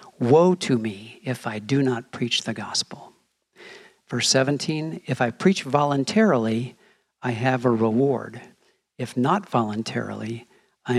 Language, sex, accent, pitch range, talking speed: English, male, American, 120-160 Hz, 130 wpm